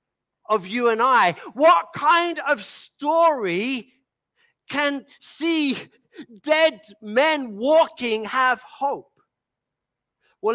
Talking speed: 90 wpm